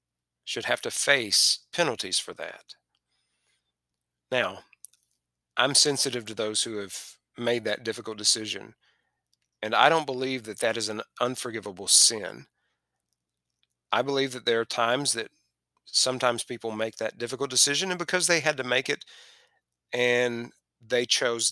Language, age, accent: English, 40-59, American